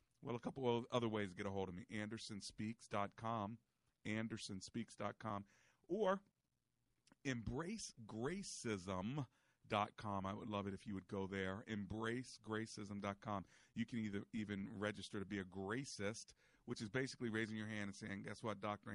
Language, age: English, 40-59